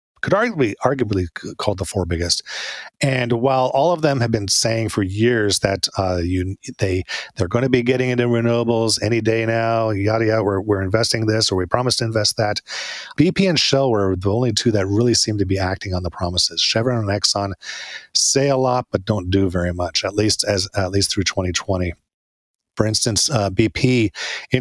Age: 40-59